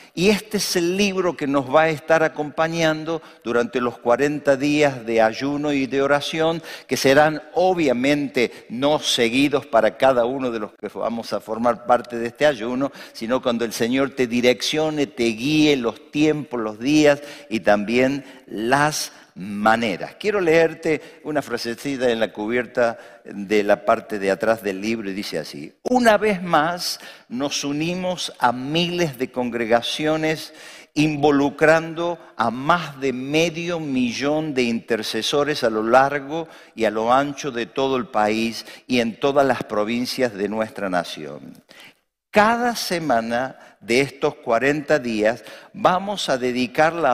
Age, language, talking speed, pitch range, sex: 50-69, Spanish, 145 wpm, 120-160 Hz, male